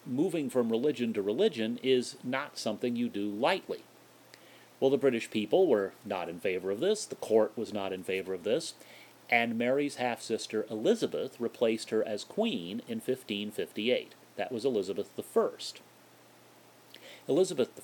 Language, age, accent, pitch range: English, 40-59, American, 105-140 Hz